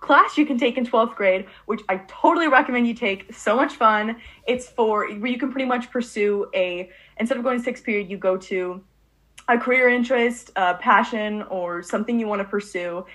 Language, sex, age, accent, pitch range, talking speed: English, female, 20-39, American, 190-235 Hz, 205 wpm